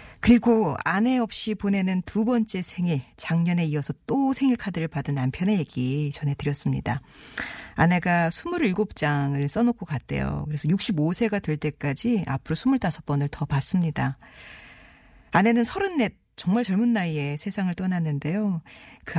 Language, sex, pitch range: Korean, female, 145-200 Hz